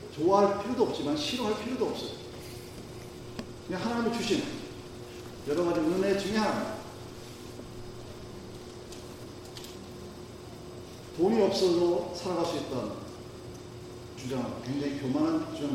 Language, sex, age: Korean, male, 40-59